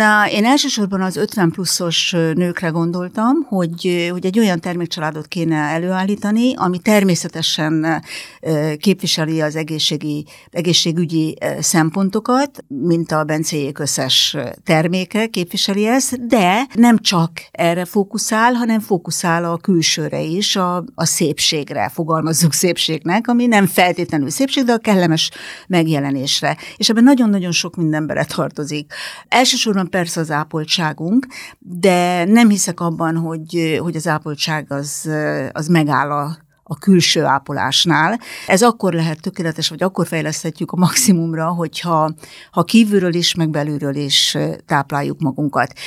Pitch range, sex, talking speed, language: 160-195 Hz, female, 125 wpm, Hungarian